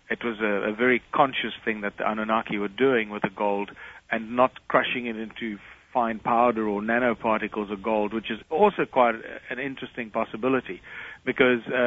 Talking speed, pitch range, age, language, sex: 170 wpm, 110-130 Hz, 40-59, English, male